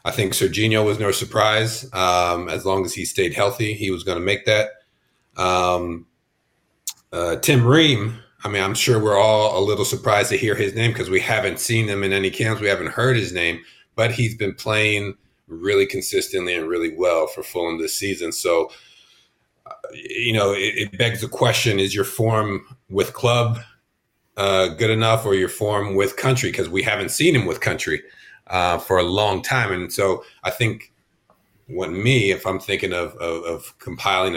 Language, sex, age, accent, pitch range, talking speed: English, male, 40-59, American, 95-115 Hz, 185 wpm